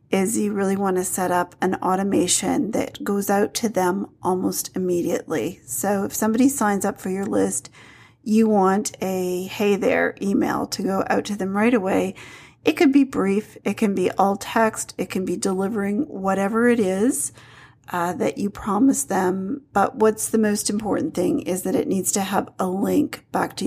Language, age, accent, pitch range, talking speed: English, 40-59, American, 185-230 Hz, 185 wpm